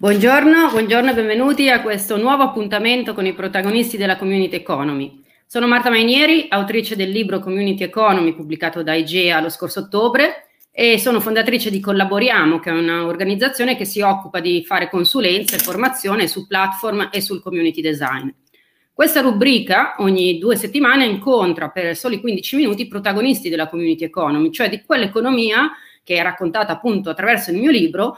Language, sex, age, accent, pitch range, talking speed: Italian, female, 30-49, native, 180-250 Hz, 160 wpm